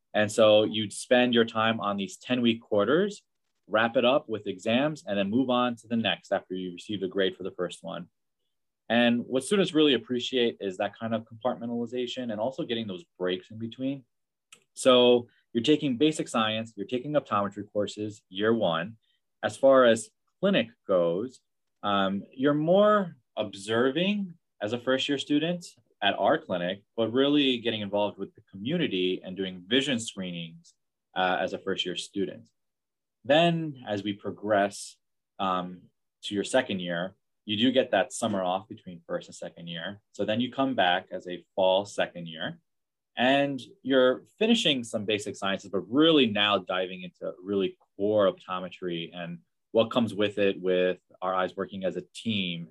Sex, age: male, 20-39